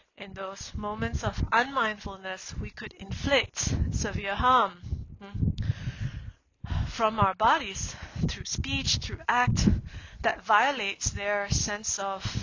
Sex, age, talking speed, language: female, 20-39, 105 wpm, English